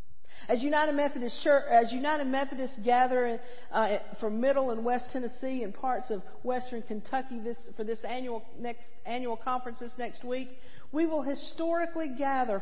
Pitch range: 215-275 Hz